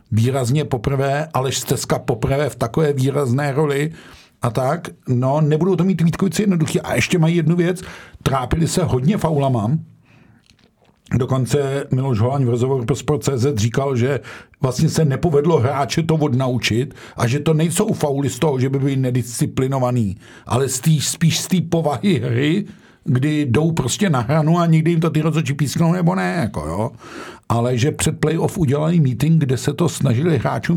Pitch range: 130-165 Hz